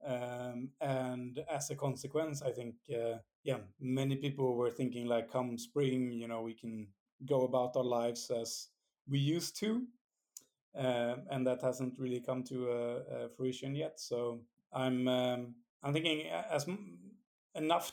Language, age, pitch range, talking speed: English, 30-49, 120-135 Hz, 160 wpm